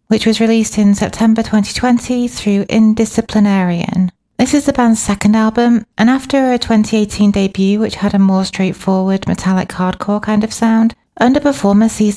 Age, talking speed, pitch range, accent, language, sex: 30-49, 155 wpm, 190-220 Hz, British, English, female